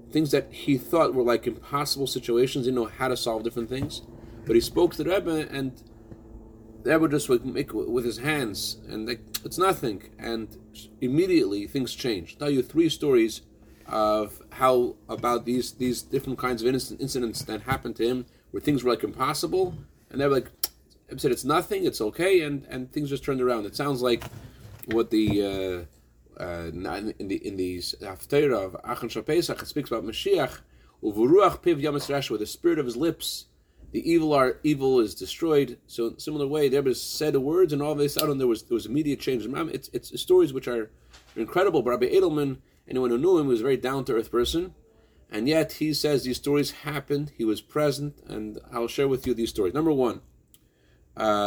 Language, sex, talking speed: English, male, 200 wpm